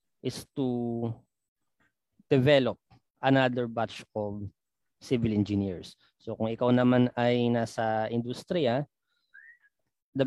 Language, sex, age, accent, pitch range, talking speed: Filipino, male, 20-39, native, 110-140 Hz, 95 wpm